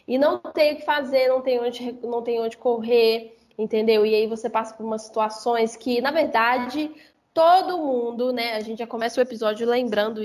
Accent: Brazilian